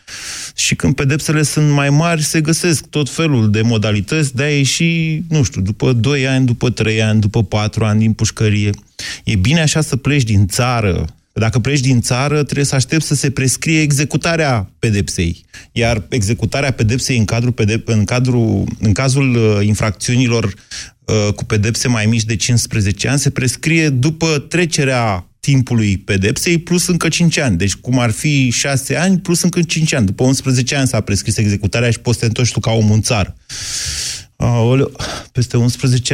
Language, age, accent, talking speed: Romanian, 30-49, native, 165 wpm